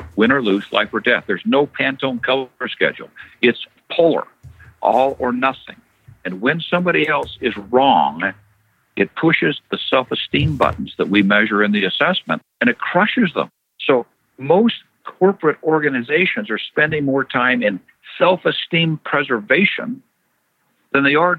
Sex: male